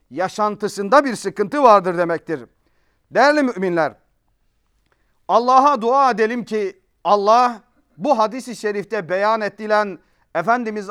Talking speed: 100 wpm